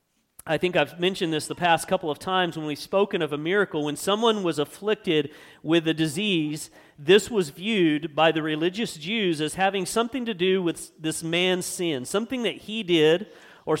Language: English